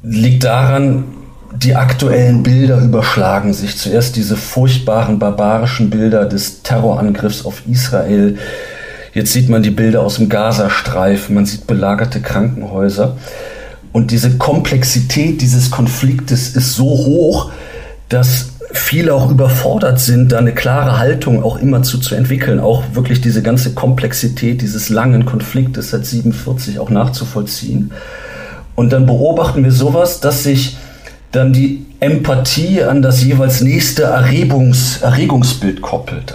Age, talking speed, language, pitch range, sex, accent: 40-59, 125 wpm, German, 115-130 Hz, male, German